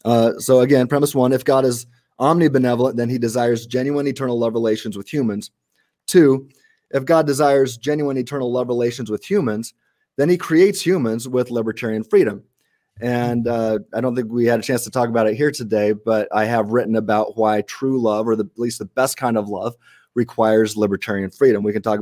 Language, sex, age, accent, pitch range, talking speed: English, male, 30-49, American, 110-135 Hz, 195 wpm